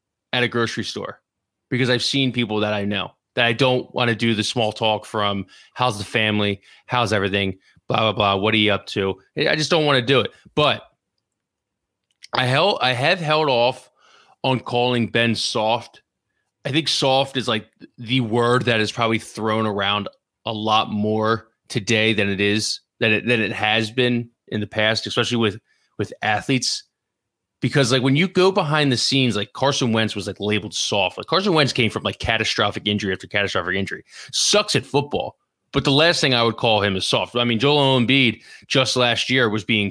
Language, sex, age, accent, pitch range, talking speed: English, male, 20-39, American, 105-130 Hz, 200 wpm